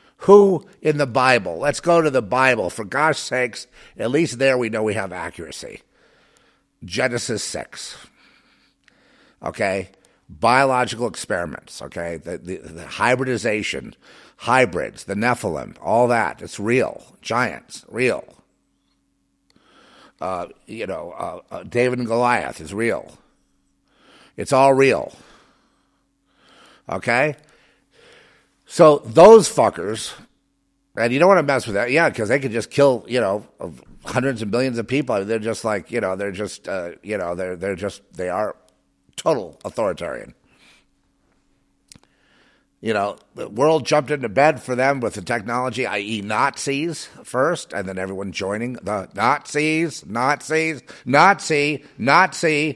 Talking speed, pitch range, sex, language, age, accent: 135 wpm, 100-150 Hz, male, English, 50-69, American